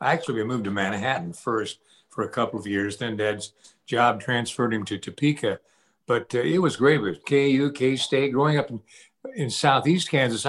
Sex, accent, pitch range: male, American, 115-155 Hz